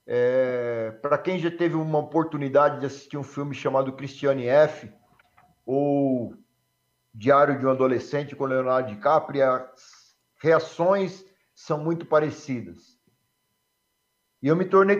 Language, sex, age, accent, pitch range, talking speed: Portuguese, male, 50-69, Brazilian, 140-170 Hz, 125 wpm